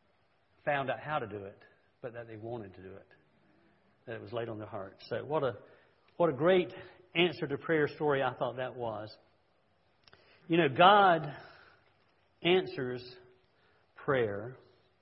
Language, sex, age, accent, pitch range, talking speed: English, male, 50-69, American, 115-150 Hz, 155 wpm